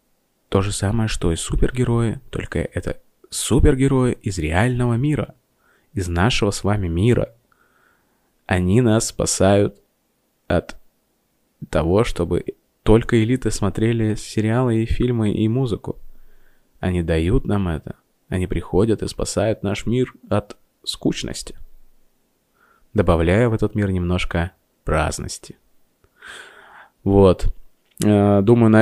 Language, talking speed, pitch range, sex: Russian, 110 wpm, 95-110 Hz, male